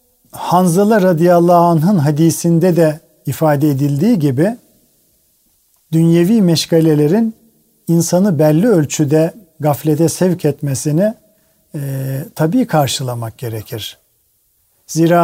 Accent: native